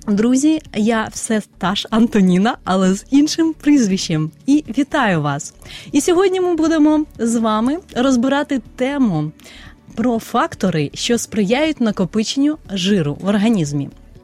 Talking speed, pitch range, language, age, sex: 120 wpm, 195-275 Hz, Ukrainian, 30-49, female